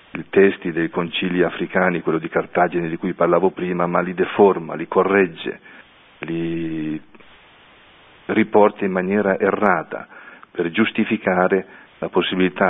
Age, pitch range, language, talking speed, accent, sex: 40-59, 85-95 Hz, Italian, 125 wpm, native, male